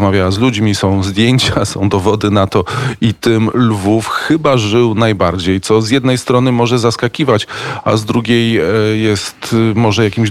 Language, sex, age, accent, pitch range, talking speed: Polish, male, 40-59, native, 100-115 Hz, 155 wpm